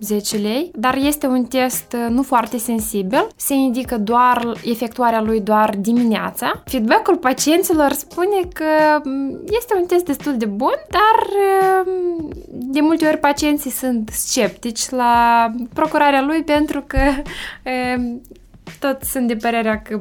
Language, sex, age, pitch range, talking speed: Romanian, female, 20-39, 215-285 Hz, 130 wpm